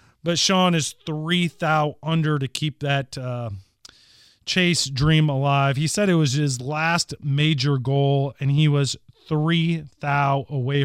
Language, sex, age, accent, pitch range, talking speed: English, male, 30-49, American, 130-160 Hz, 150 wpm